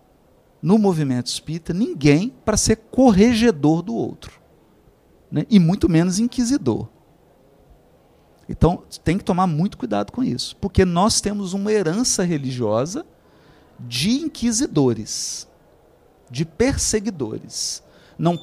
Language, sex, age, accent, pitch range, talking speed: Portuguese, male, 40-59, Brazilian, 140-235 Hz, 105 wpm